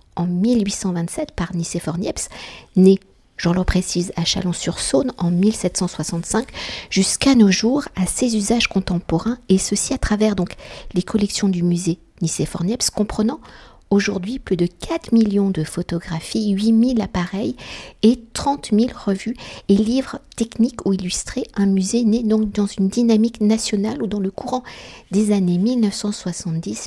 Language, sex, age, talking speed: French, female, 50-69, 140 wpm